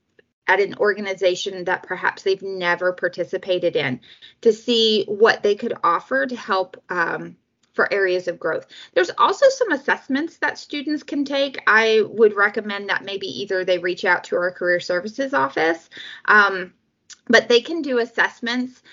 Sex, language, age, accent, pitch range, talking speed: female, English, 20-39, American, 195-250 Hz, 160 wpm